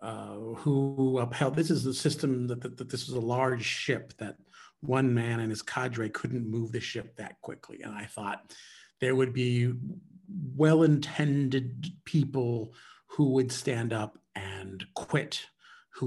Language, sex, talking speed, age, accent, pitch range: English, male, 155 wpm, 40-59, American, 125-170 Hz